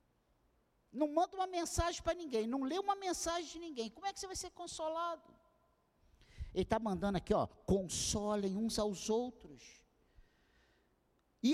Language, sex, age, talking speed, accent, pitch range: Portuguese, male, 50-69, 150 wpm, Brazilian, 190-295 Hz